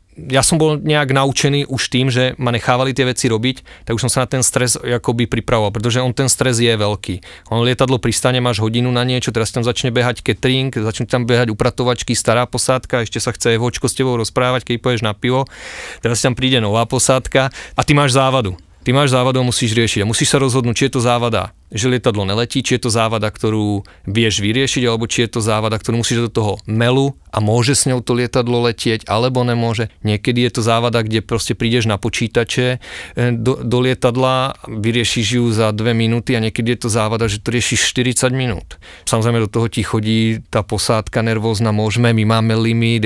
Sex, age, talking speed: male, 30-49, 205 wpm